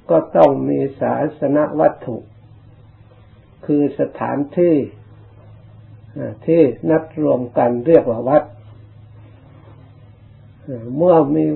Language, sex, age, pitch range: Thai, male, 60-79, 110-150 Hz